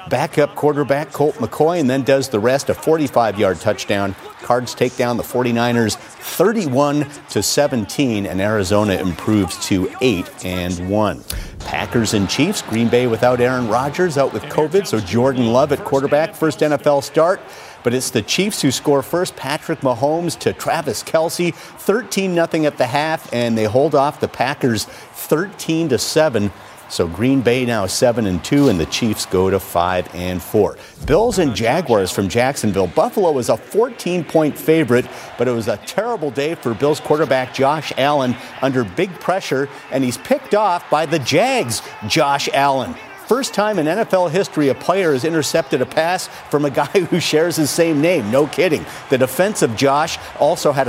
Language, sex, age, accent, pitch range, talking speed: English, male, 50-69, American, 120-160 Hz, 170 wpm